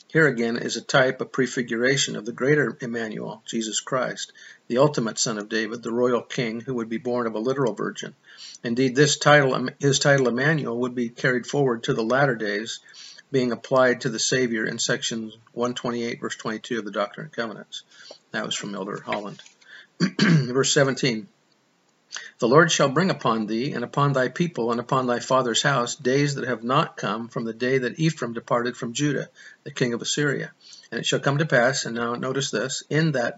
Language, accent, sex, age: English, American, male, 50-69